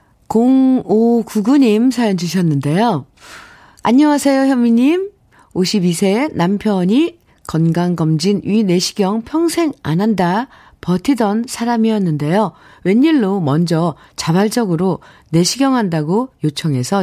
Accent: native